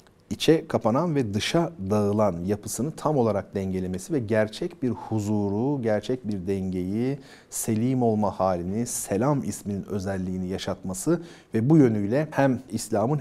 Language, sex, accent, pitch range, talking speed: Turkish, male, native, 100-130 Hz, 125 wpm